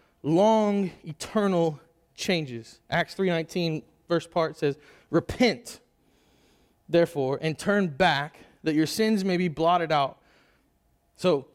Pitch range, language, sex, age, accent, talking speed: 150-195 Hz, English, male, 20-39, American, 110 wpm